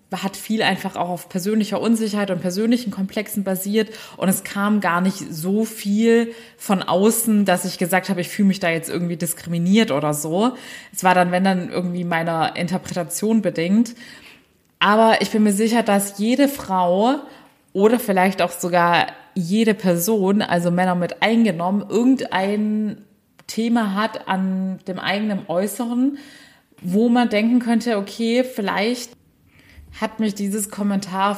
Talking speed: 145 wpm